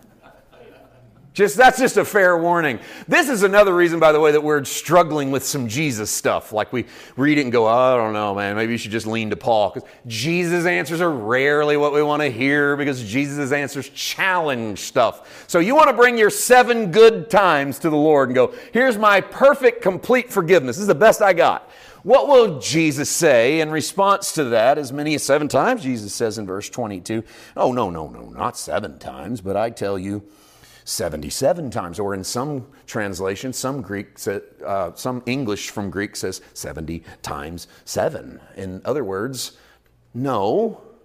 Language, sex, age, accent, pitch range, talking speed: English, male, 40-59, American, 115-190 Hz, 190 wpm